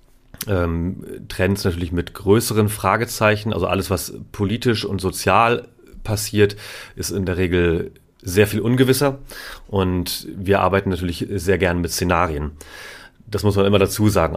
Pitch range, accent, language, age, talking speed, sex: 85-100 Hz, German, German, 30-49, 140 wpm, male